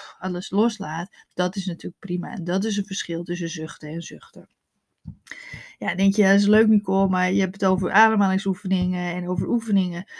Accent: Dutch